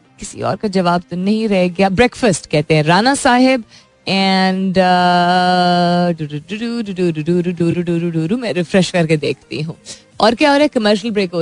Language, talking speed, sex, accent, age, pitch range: Hindi, 130 wpm, female, native, 20-39, 165-220 Hz